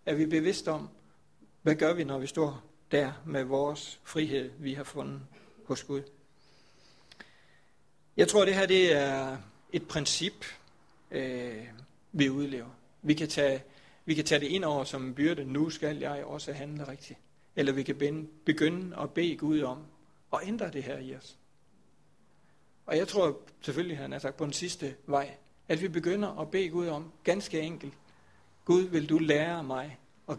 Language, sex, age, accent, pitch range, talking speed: Danish, male, 60-79, native, 135-160 Hz, 180 wpm